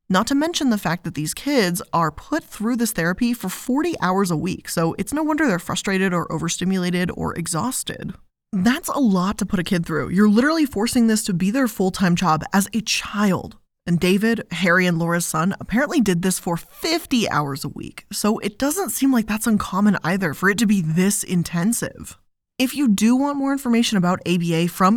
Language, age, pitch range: English, 20-39, 170-230 Hz